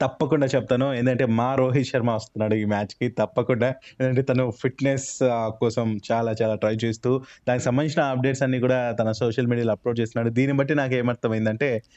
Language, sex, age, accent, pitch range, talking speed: Telugu, male, 20-39, native, 115-140 Hz, 160 wpm